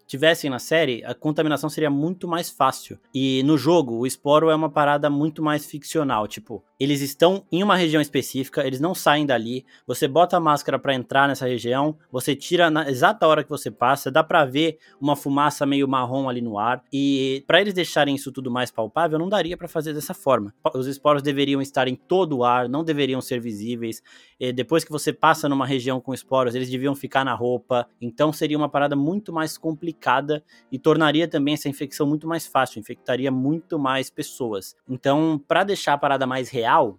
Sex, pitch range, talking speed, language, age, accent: male, 130-160 Hz, 200 wpm, Portuguese, 20-39, Brazilian